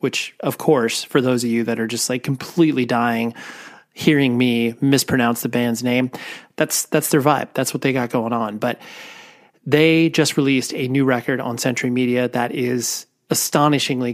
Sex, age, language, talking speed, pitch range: male, 30-49, English, 180 wpm, 125-155 Hz